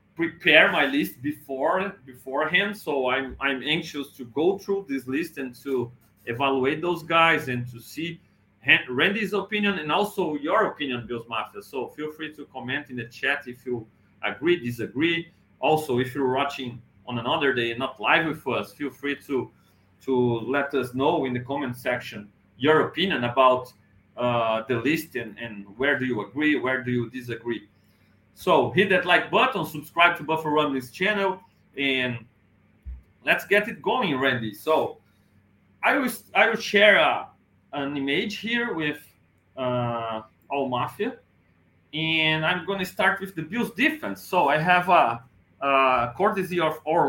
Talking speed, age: 165 wpm, 40-59